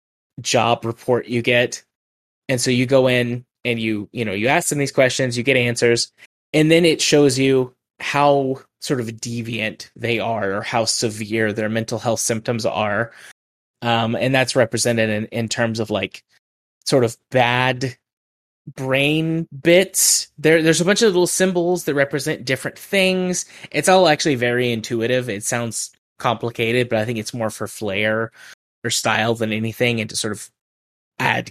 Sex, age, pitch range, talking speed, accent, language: male, 20-39, 115-135 Hz, 170 wpm, American, English